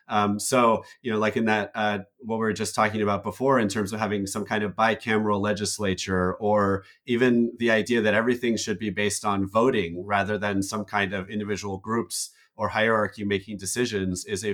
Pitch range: 100-120 Hz